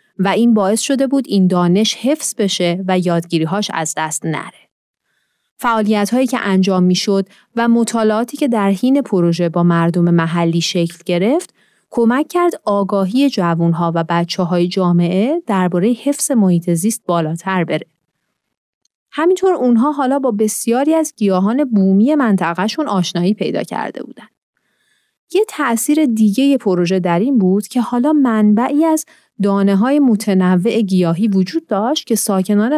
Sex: female